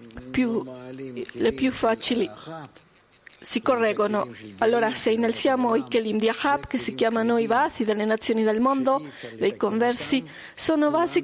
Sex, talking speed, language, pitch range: female, 135 wpm, Italian, 225-290 Hz